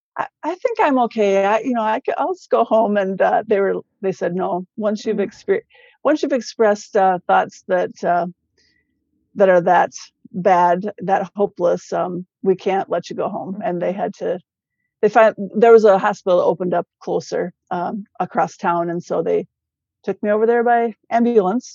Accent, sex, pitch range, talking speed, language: American, female, 180-210 Hz, 190 wpm, English